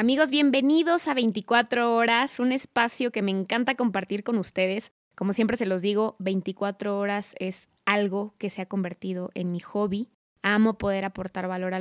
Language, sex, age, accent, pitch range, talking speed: Spanish, female, 20-39, Mexican, 190-235 Hz, 175 wpm